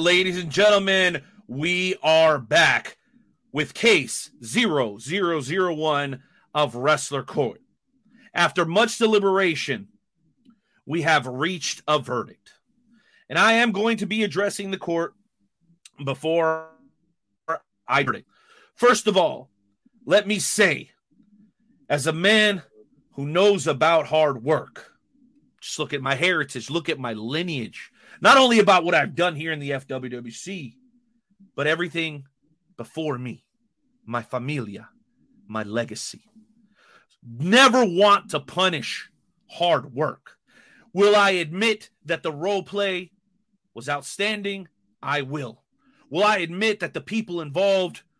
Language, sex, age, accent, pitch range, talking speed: English, male, 40-59, American, 150-210 Hz, 120 wpm